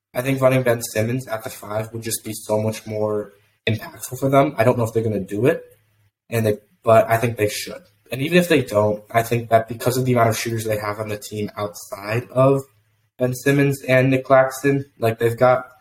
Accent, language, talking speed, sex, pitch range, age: American, English, 235 wpm, male, 105-125 Hz, 20-39